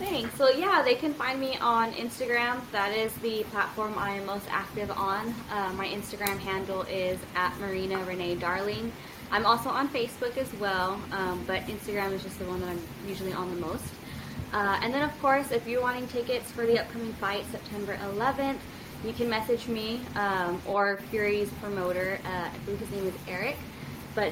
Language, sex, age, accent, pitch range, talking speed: English, female, 20-39, American, 195-230 Hz, 190 wpm